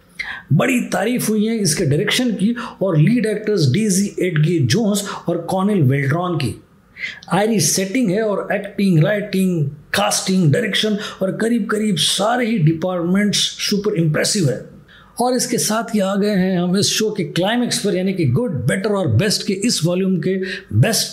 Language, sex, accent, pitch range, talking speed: Hindi, male, native, 170-220 Hz, 165 wpm